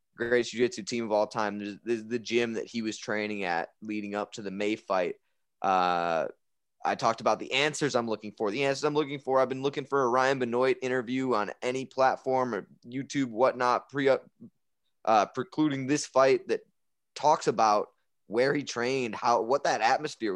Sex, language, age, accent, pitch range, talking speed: male, English, 20-39, American, 105-130 Hz, 185 wpm